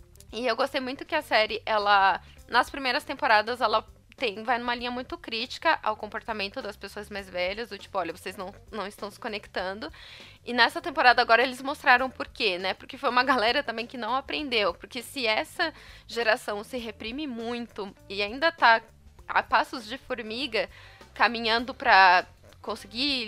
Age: 20-39